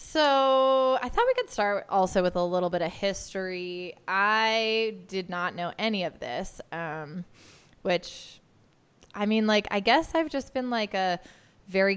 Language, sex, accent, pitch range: English, female, American, 175-220 Hz